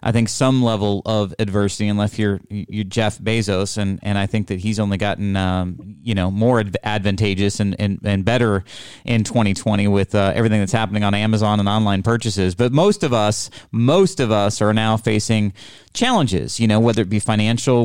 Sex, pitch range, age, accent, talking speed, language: male, 100-115 Hz, 30-49, American, 190 wpm, English